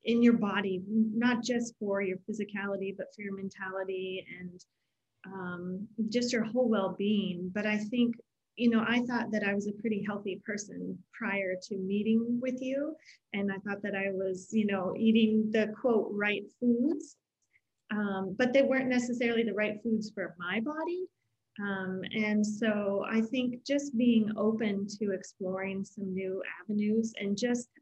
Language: English